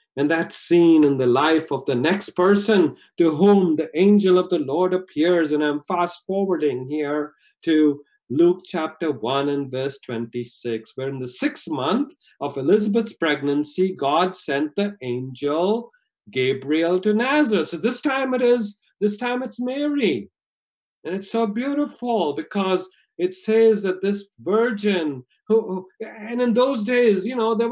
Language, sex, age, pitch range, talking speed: English, male, 50-69, 145-220 Hz, 155 wpm